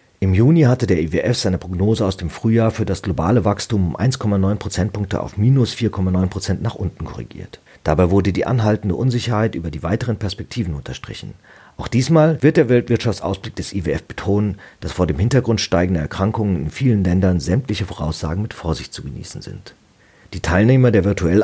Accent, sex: German, male